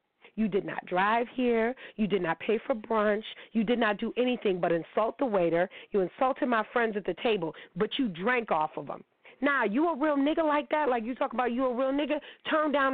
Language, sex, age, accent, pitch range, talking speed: English, female, 40-59, American, 215-275 Hz, 235 wpm